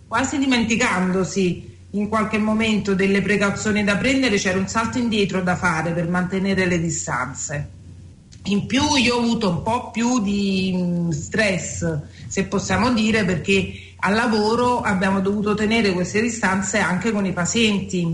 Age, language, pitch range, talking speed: 40-59, Italian, 185-220 Hz, 145 wpm